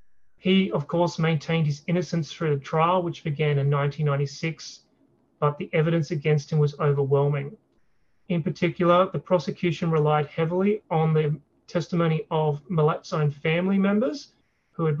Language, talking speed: English, 145 wpm